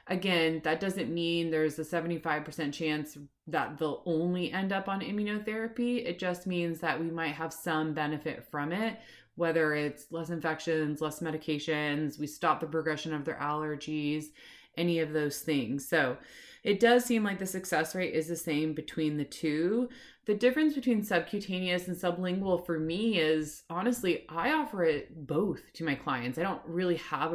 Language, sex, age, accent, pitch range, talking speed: English, female, 20-39, American, 155-190 Hz, 170 wpm